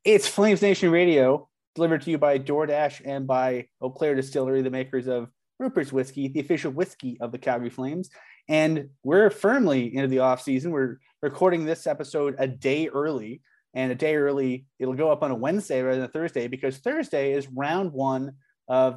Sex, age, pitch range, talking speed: male, 30-49, 130-145 Hz, 185 wpm